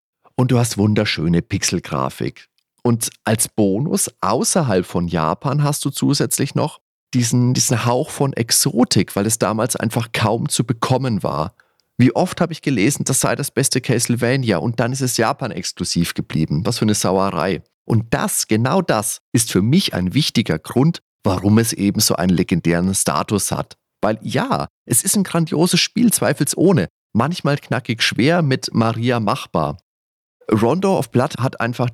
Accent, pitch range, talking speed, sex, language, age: German, 100-135 Hz, 160 wpm, male, German, 30-49